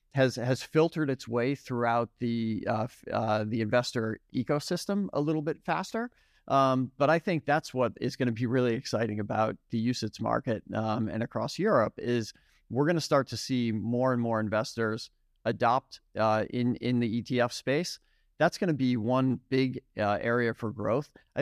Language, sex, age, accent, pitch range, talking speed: English, male, 40-59, American, 115-135 Hz, 180 wpm